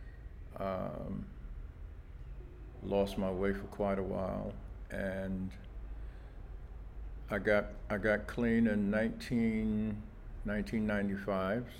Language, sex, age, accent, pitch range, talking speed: English, male, 50-69, American, 95-110 Hz, 85 wpm